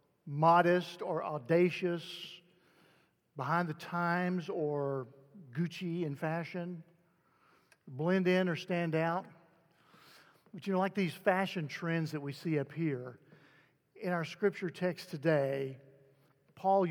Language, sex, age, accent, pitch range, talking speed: English, male, 50-69, American, 140-170 Hz, 115 wpm